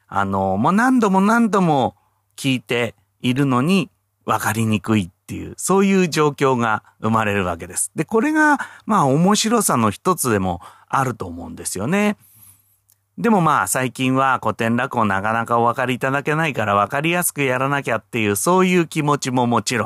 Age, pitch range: 40-59, 100-145 Hz